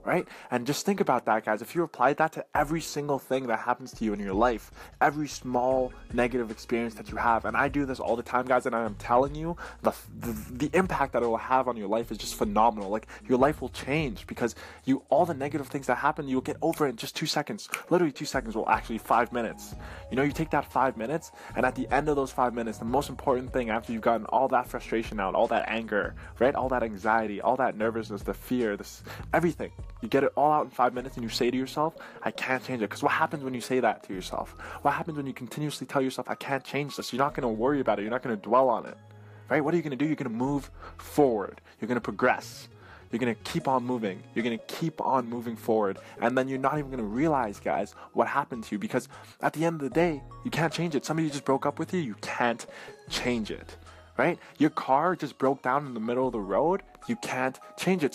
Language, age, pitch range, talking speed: English, 20-39, 115-145 Hz, 260 wpm